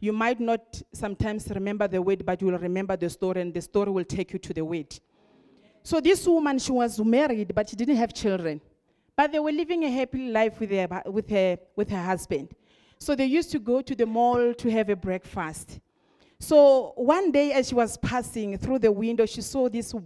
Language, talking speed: English, 210 wpm